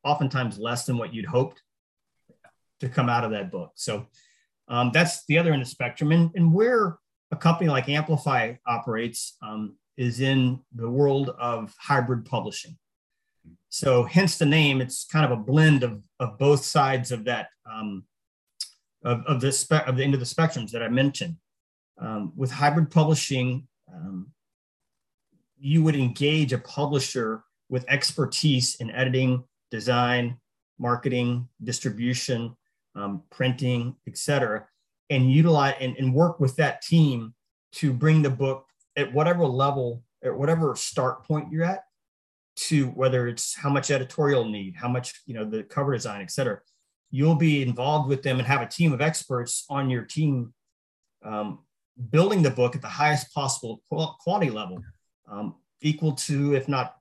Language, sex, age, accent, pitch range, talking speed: English, male, 40-59, American, 120-150 Hz, 160 wpm